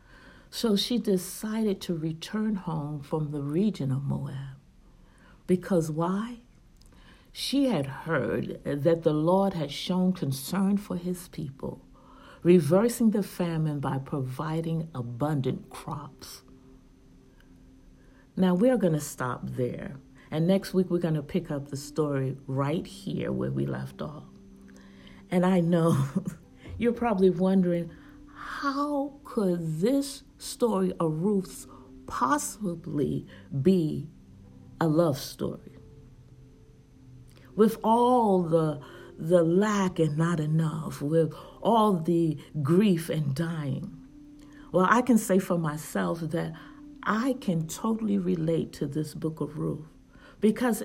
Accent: American